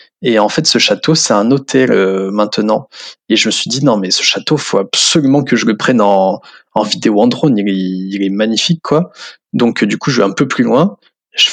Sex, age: male, 20-39